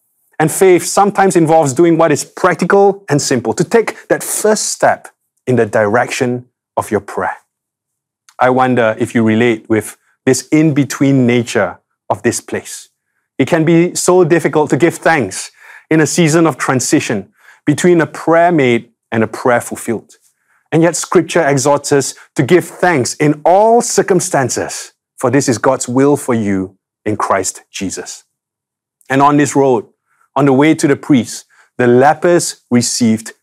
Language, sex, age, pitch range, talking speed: English, male, 30-49, 125-170 Hz, 160 wpm